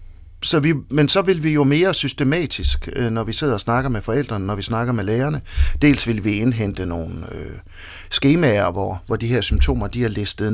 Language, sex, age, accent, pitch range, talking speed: Danish, male, 50-69, native, 95-130 Hz, 205 wpm